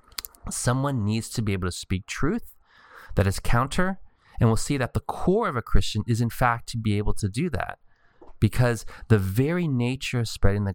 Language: English